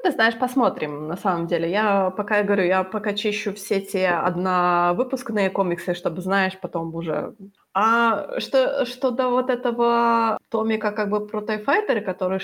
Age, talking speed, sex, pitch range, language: 20-39, 160 wpm, female, 185-230 Hz, Ukrainian